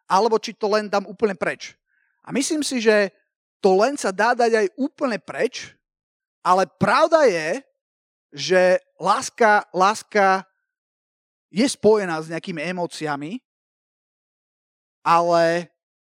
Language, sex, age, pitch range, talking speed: Slovak, male, 30-49, 180-225 Hz, 115 wpm